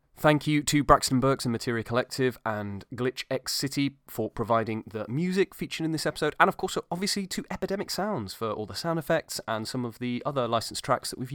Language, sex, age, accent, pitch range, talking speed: English, male, 30-49, British, 110-150 Hz, 215 wpm